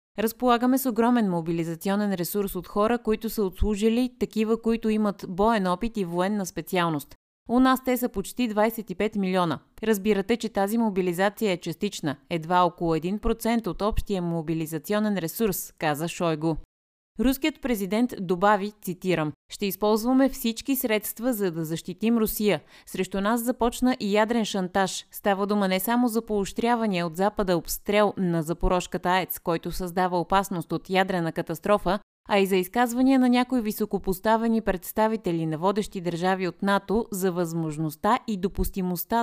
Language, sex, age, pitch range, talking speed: Bulgarian, female, 30-49, 175-225 Hz, 140 wpm